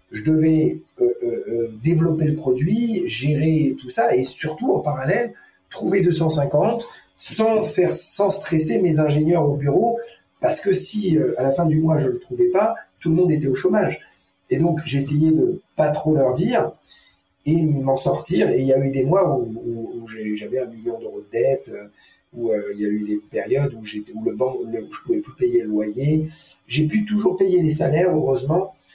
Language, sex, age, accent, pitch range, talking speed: French, male, 40-59, French, 135-180 Hz, 200 wpm